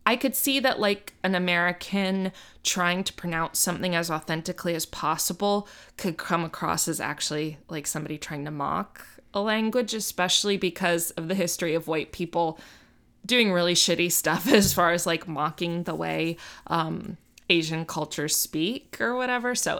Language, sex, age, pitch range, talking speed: English, female, 20-39, 170-235 Hz, 160 wpm